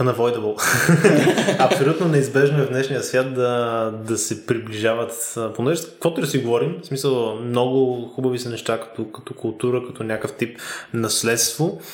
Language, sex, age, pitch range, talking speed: Bulgarian, male, 20-39, 115-130 Hz, 135 wpm